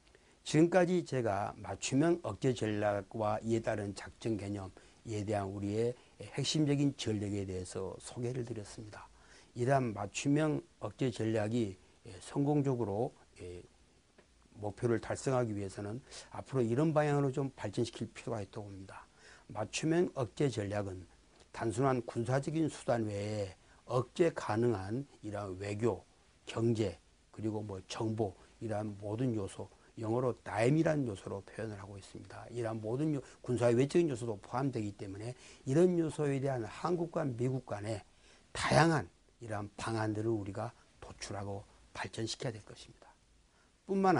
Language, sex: Korean, male